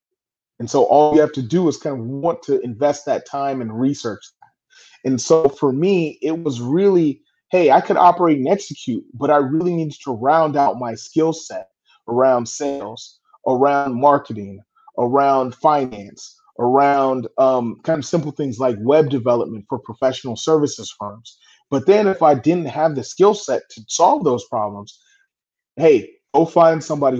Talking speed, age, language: 170 wpm, 30-49, English